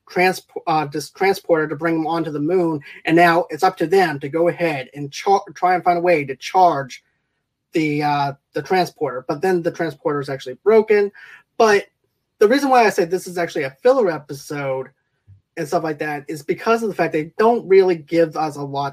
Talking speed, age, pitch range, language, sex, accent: 210 wpm, 20-39, 155-185 Hz, English, male, American